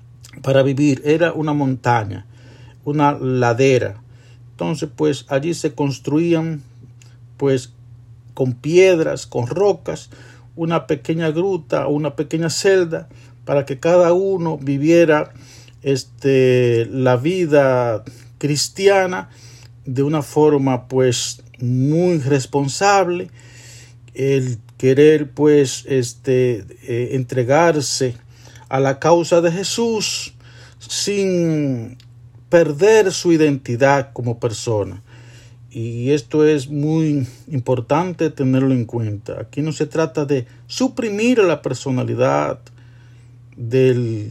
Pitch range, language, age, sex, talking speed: 120-150 Hz, Spanish, 50-69, male, 95 wpm